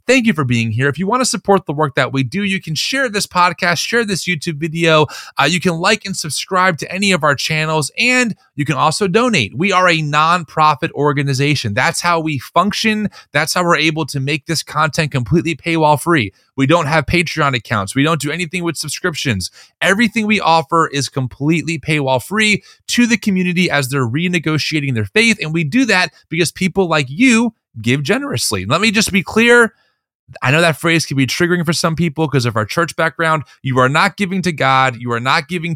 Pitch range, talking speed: 140-185 Hz, 210 wpm